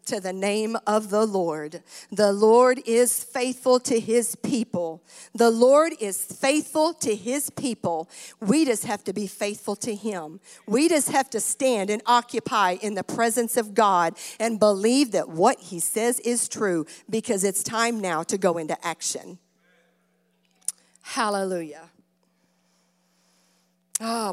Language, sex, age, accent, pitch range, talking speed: English, female, 50-69, American, 170-235 Hz, 140 wpm